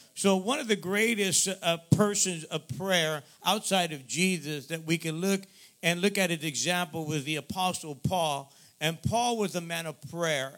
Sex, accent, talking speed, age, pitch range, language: male, American, 180 wpm, 50-69, 160-200 Hz, English